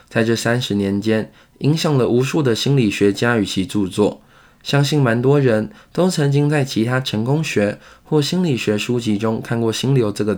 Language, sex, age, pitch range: Chinese, male, 20-39, 105-145 Hz